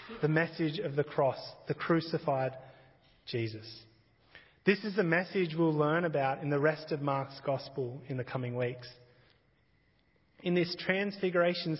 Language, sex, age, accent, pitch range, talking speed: English, male, 30-49, Australian, 135-165 Hz, 140 wpm